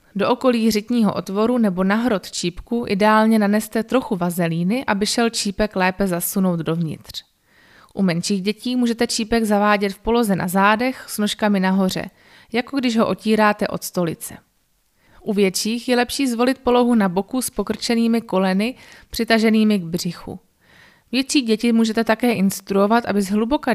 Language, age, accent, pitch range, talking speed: Czech, 20-39, native, 190-235 Hz, 145 wpm